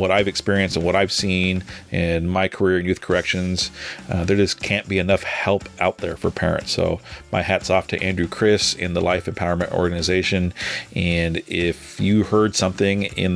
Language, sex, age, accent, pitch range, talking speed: English, male, 40-59, American, 95-115 Hz, 190 wpm